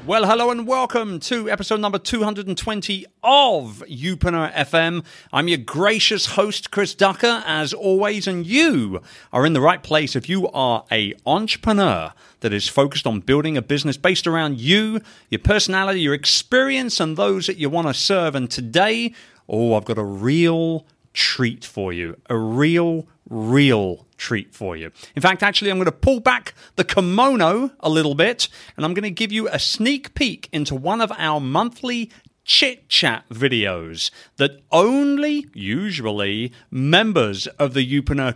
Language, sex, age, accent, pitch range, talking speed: English, male, 40-59, British, 130-205 Hz, 165 wpm